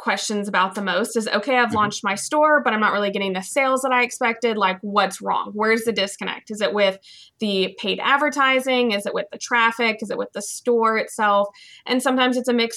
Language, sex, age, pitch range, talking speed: English, female, 20-39, 205-255 Hz, 225 wpm